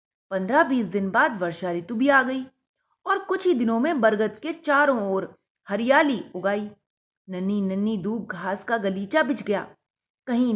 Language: Hindi